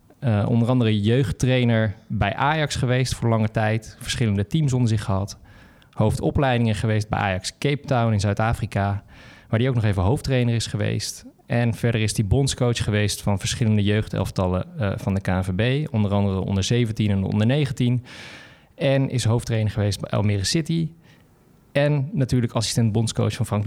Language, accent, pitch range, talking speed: Dutch, Dutch, 105-130 Hz, 160 wpm